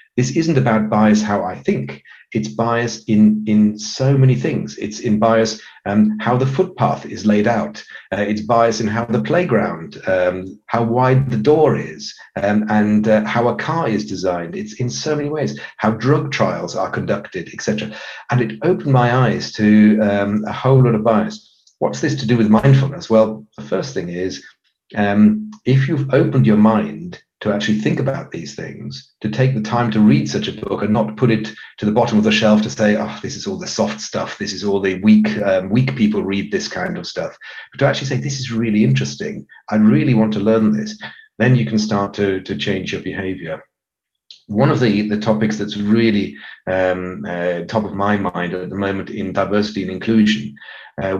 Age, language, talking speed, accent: 40-59, English, 205 wpm, British